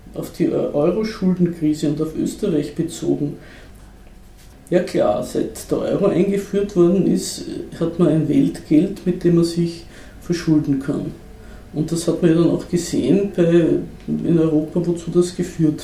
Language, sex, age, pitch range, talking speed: German, female, 50-69, 150-180 Hz, 145 wpm